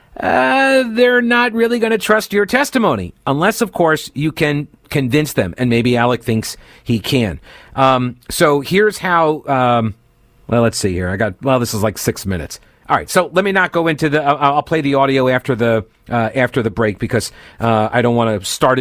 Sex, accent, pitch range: male, American, 125-155 Hz